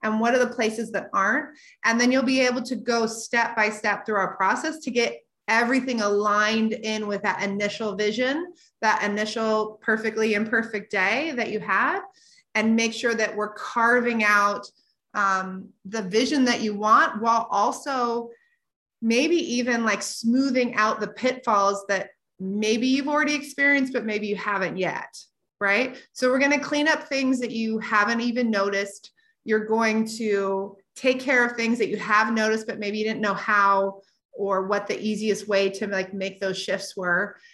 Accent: American